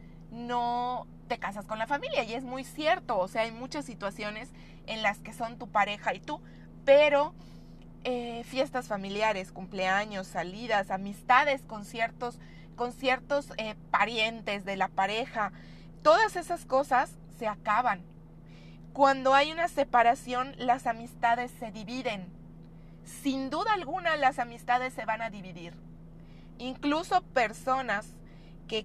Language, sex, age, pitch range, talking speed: Spanish, female, 30-49, 185-250 Hz, 130 wpm